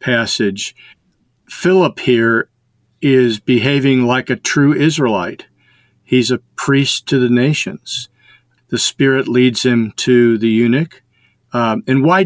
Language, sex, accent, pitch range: English, male, American, 115-140 Hz